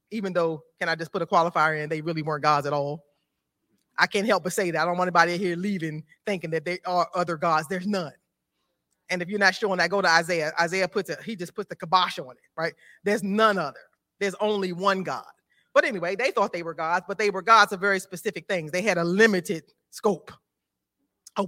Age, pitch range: 30-49, 170-230 Hz